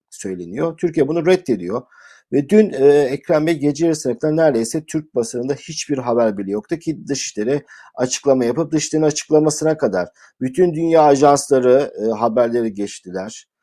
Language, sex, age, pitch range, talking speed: Turkish, male, 50-69, 120-155 Hz, 135 wpm